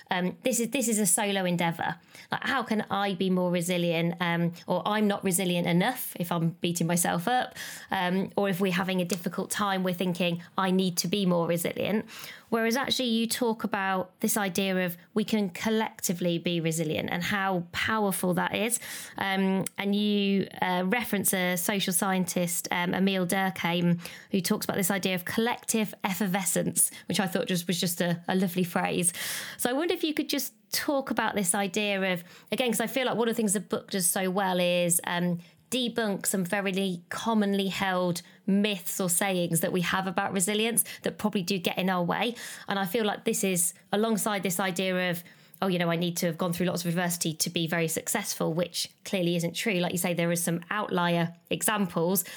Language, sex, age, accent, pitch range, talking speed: English, female, 20-39, British, 175-210 Hz, 200 wpm